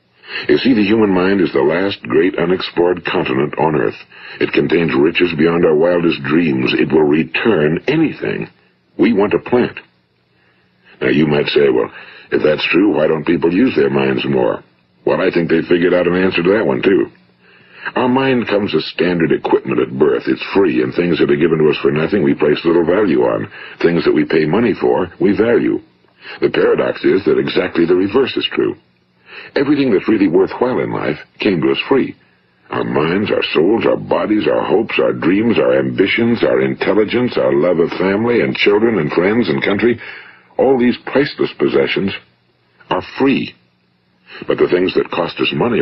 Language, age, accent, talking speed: English, 60-79, American, 185 wpm